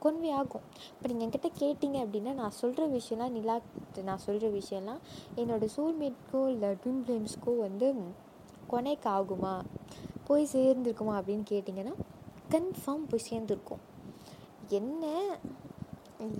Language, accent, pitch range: Tamil, native, 195-265 Hz